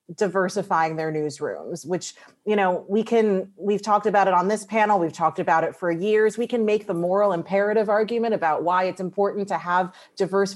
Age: 30-49